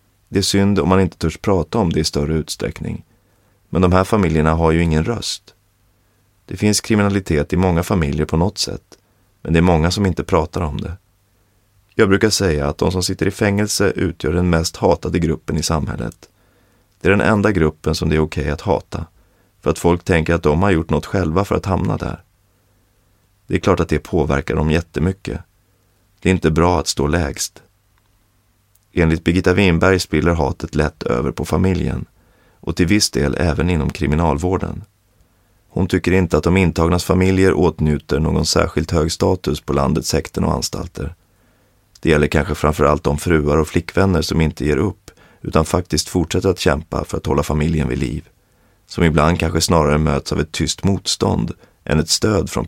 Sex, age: male, 30-49